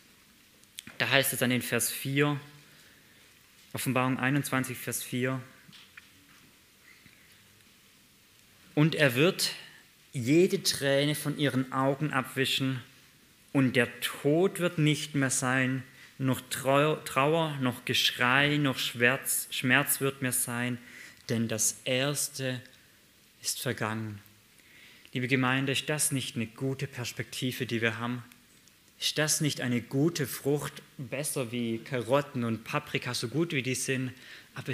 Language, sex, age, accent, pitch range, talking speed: German, male, 20-39, German, 120-140 Hz, 120 wpm